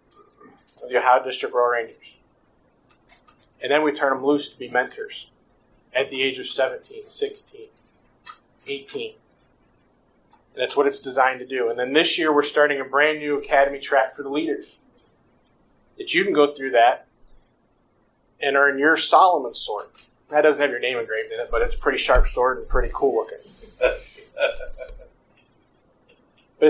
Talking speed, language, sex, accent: 165 wpm, English, male, American